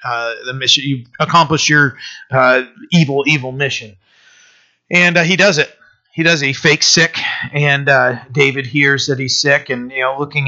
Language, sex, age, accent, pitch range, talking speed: English, male, 30-49, American, 125-150 Hz, 180 wpm